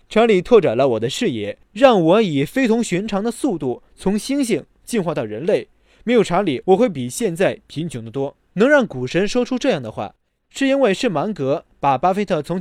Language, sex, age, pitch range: Chinese, male, 20-39, 150-230 Hz